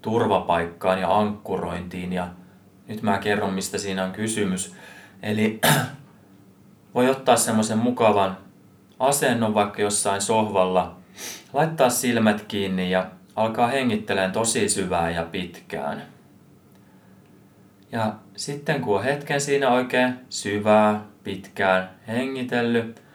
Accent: native